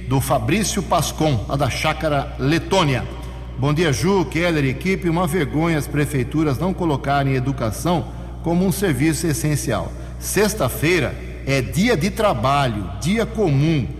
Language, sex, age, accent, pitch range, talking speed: Portuguese, male, 60-79, Brazilian, 125-170 Hz, 135 wpm